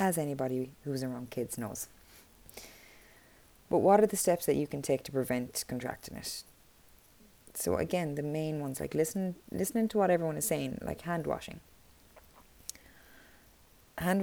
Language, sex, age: English, female, 20-39